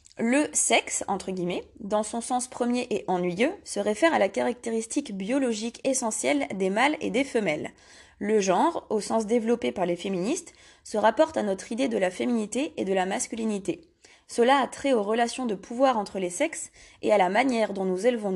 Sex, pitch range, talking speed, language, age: female, 190-265 Hz, 195 wpm, French, 20-39